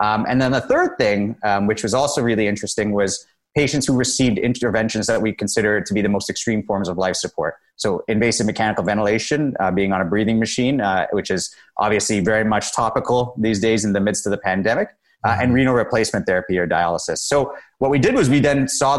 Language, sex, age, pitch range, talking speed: English, male, 30-49, 105-130 Hz, 220 wpm